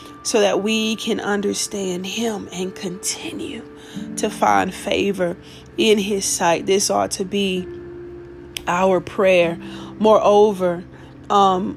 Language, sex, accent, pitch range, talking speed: English, female, American, 170-195 Hz, 110 wpm